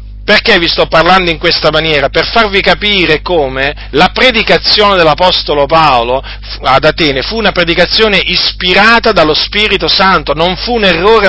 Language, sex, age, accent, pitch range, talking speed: Italian, male, 40-59, native, 140-205 Hz, 150 wpm